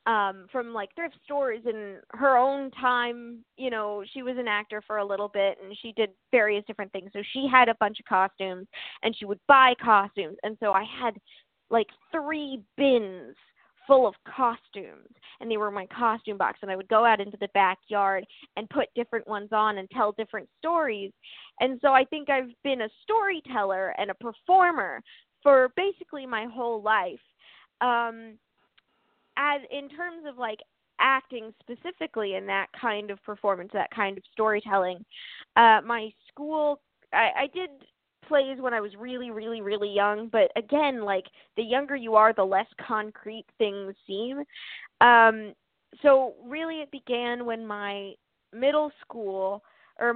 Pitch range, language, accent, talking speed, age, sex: 205-265 Hz, English, American, 165 wpm, 20-39, female